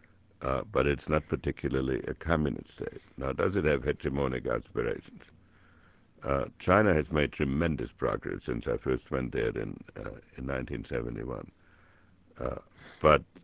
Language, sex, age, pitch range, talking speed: English, male, 60-79, 70-90 Hz, 140 wpm